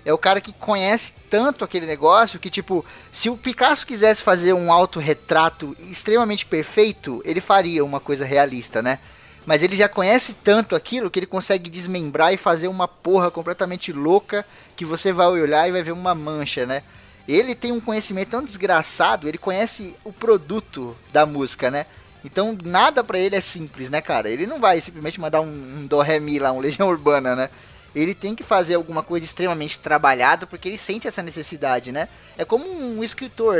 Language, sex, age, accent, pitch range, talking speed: Portuguese, male, 20-39, Brazilian, 155-210 Hz, 185 wpm